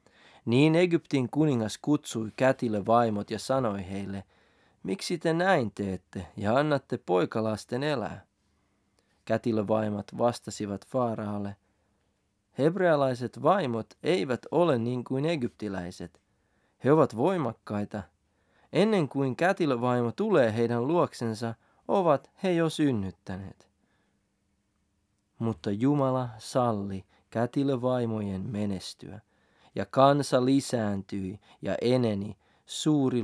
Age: 30-49